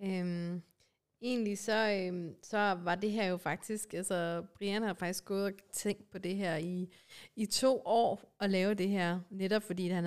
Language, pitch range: Danish, 175-210 Hz